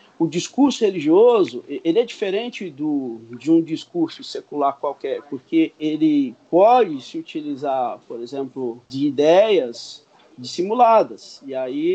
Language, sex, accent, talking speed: English, male, Brazilian, 120 wpm